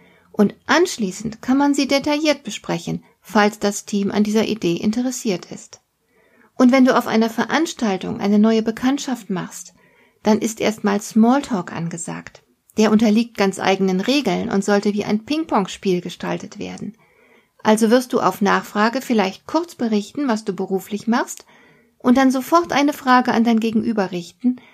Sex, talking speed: female, 155 wpm